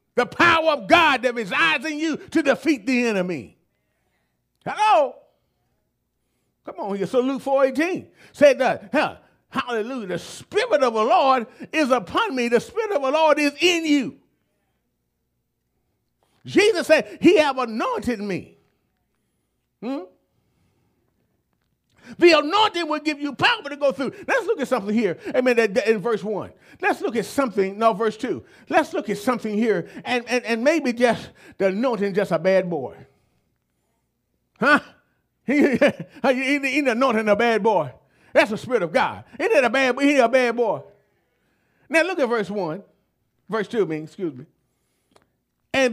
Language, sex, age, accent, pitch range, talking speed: English, male, 40-59, American, 215-300 Hz, 155 wpm